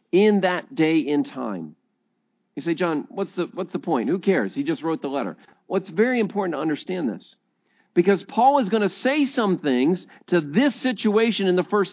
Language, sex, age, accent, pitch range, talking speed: English, male, 50-69, American, 155-220 Hz, 205 wpm